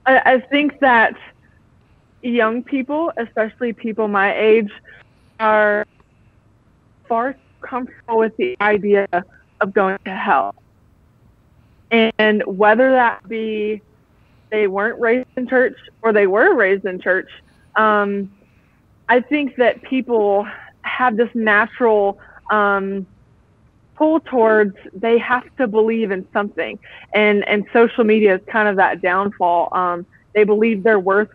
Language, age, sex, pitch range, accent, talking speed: English, 20-39, female, 195-235 Hz, American, 125 wpm